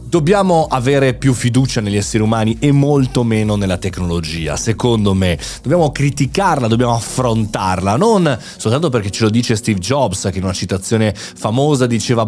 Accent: native